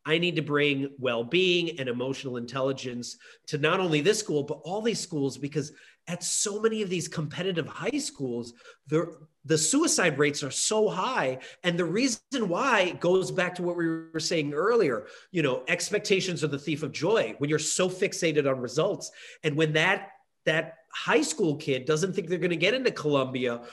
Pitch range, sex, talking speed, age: 135-180 Hz, male, 185 wpm, 30-49